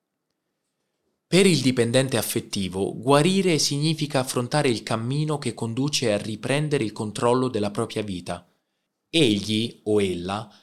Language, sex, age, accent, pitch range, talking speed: Italian, male, 20-39, native, 105-135 Hz, 120 wpm